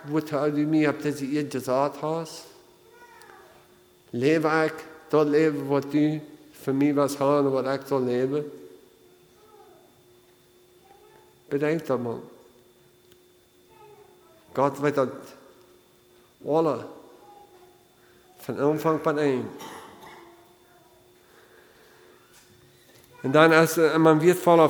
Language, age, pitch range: English, 50-69, 140-160 Hz